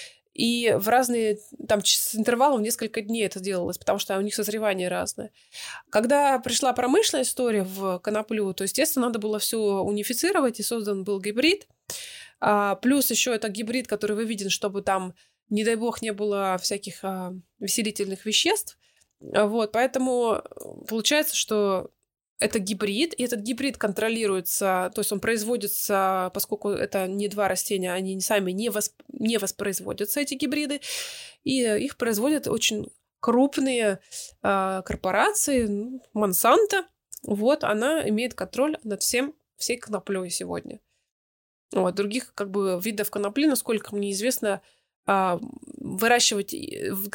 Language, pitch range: Russian, 200-255 Hz